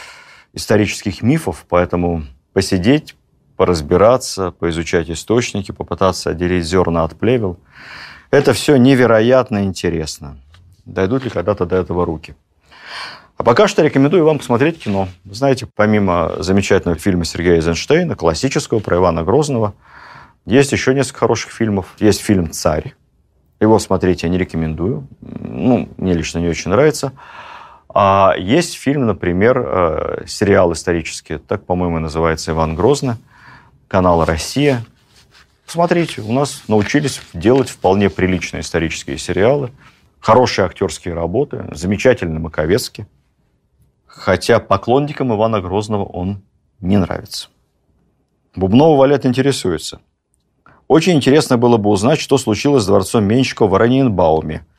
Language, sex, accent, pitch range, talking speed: Russian, male, native, 85-130 Hz, 120 wpm